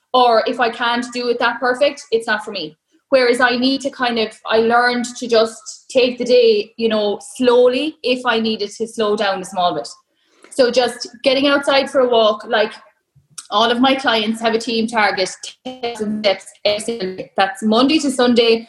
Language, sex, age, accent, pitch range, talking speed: English, female, 20-39, Irish, 225-275 Hz, 185 wpm